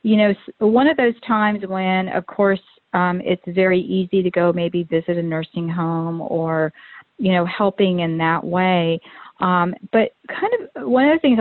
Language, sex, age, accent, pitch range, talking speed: English, female, 50-69, American, 180-215 Hz, 185 wpm